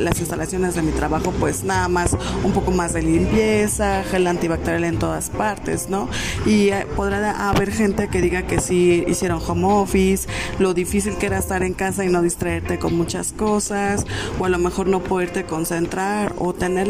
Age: 20-39